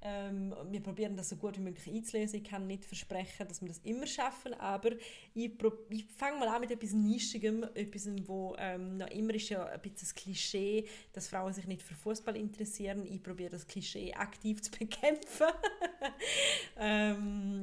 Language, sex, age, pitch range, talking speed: German, female, 20-39, 185-225 Hz, 185 wpm